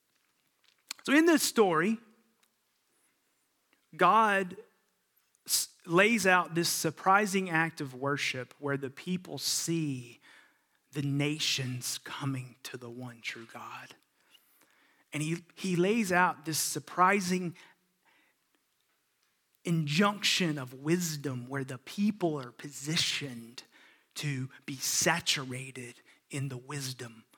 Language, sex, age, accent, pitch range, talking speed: English, male, 30-49, American, 135-175 Hz, 100 wpm